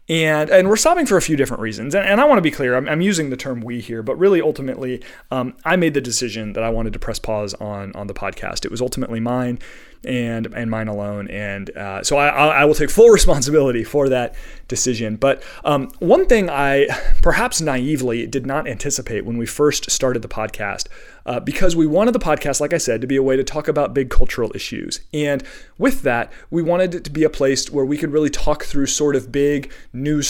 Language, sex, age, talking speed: English, male, 30-49, 230 wpm